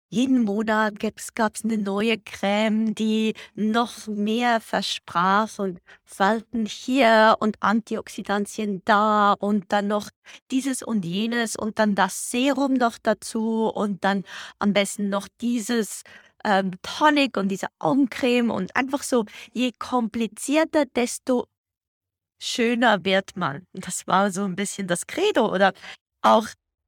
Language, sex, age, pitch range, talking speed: German, female, 20-39, 195-230 Hz, 130 wpm